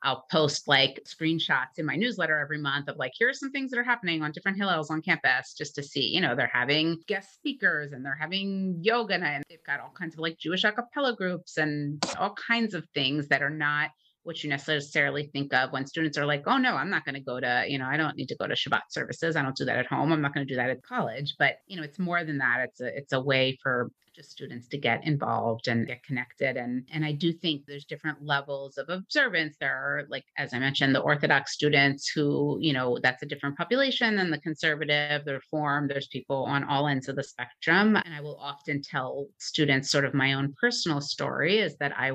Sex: female